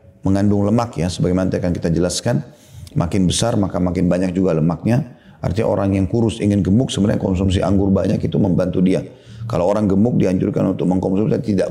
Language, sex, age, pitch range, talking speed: Indonesian, male, 40-59, 90-115 Hz, 180 wpm